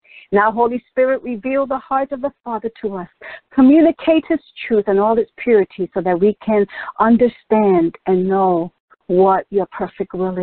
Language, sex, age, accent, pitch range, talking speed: English, female, 50-69, American, 185-250 Hz, 165 wpm